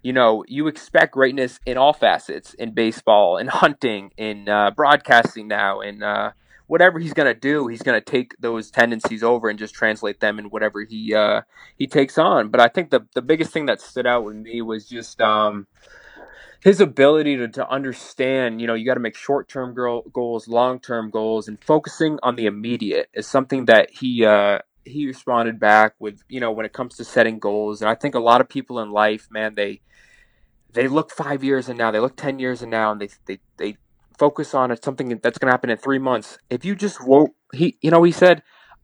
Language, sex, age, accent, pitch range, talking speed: English, male, 20-39, American, 110-135 Hz, 215 wpm